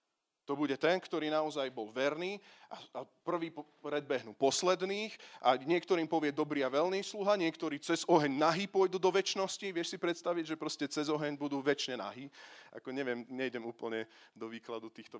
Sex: male